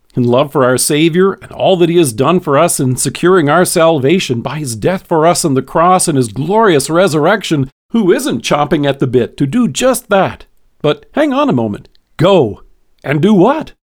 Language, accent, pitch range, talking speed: English, American, 135-185 Hz, 205 wpm